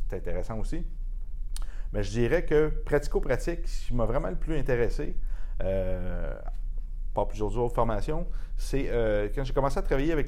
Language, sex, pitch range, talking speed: French, male, 105-140 Hz, 165 wpm